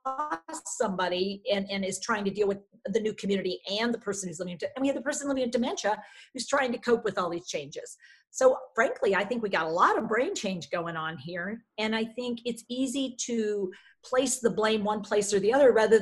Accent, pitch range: American, 200-255 Hz